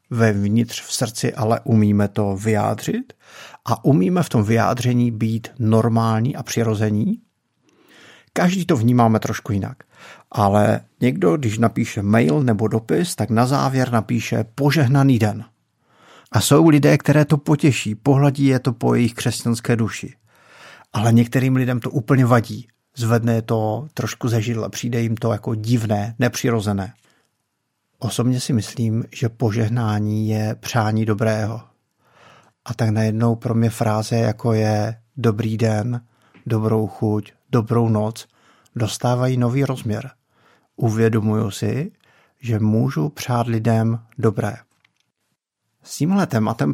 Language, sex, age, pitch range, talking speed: Czech, male, 50-69, 110-125 Hz, 125 wpm